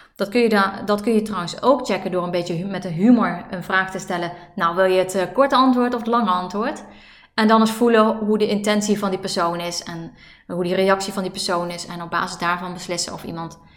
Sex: female